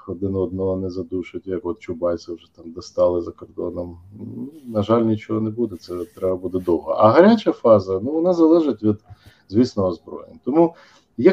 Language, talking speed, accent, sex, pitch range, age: Ukrainian, 170 wpm, native, male, 95-140 Hz, 40-59